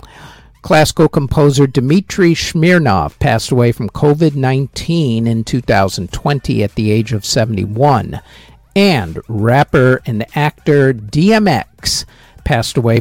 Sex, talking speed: male, 100 wpm